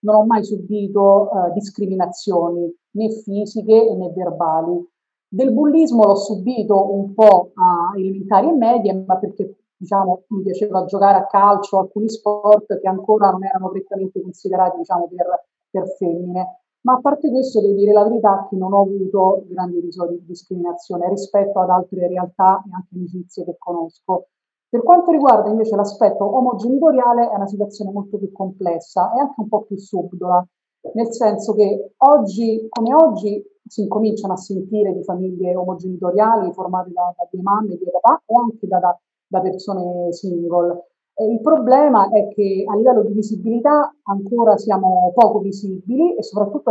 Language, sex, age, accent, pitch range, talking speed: Italian, female, 40-59, native, 185-220 Hz, 160 wpm